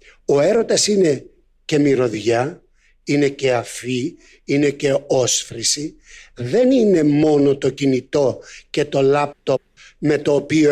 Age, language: 60-79, Greek